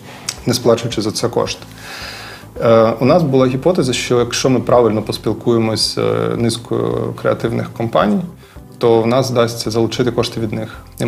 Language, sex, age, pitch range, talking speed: Ukrainian, male, 20-39, 115-125 Hz, 150 wpm